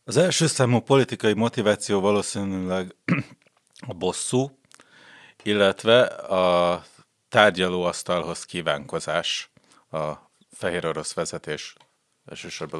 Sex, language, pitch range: male, Hungarian, 90-120 Hz